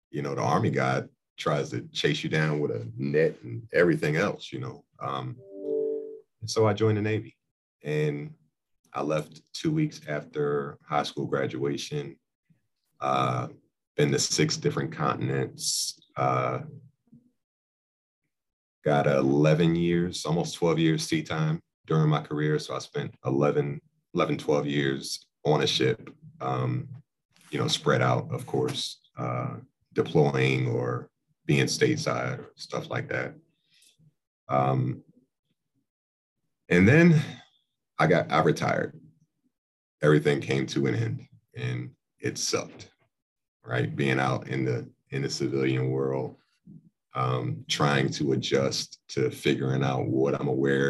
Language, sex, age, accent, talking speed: English, male, 40-59, American, 130 wpm